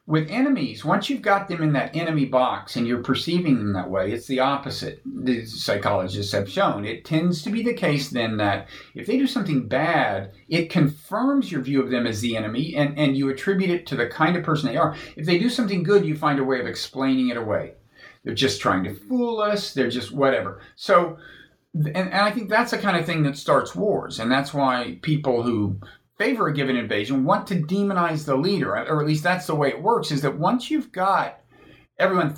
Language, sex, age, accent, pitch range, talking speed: English, male, 50-69, American, 125-185 Hz, 220 wpm